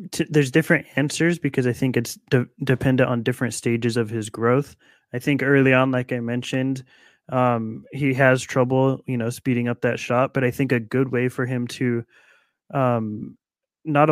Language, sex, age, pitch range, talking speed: English, male, 20-39, 120-135 Hz, 180 wpm